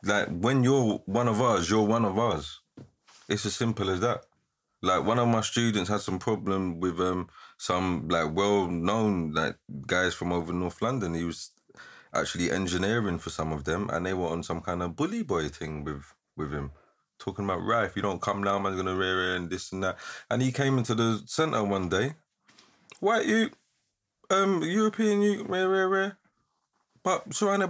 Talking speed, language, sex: 195 wpm, English, male